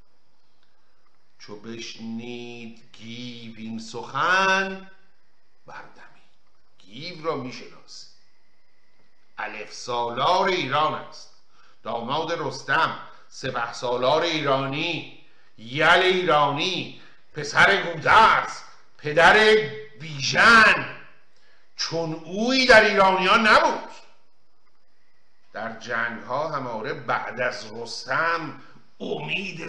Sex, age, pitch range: male, 50-69, 130-185 Hz